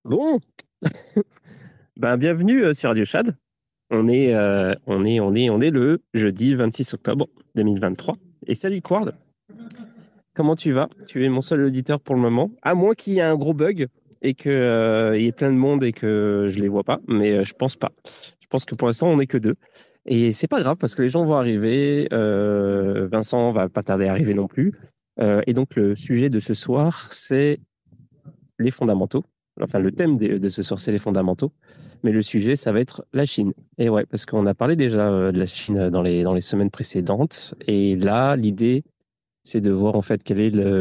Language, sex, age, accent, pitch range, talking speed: French, male, 20-39, French, 100-135 Hz, 215 wpm